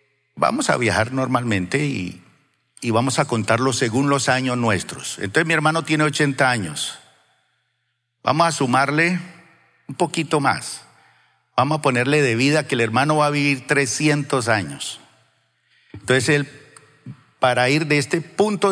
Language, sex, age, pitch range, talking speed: Spanish, male, 50-69, 110-145 Hz, 145 wpm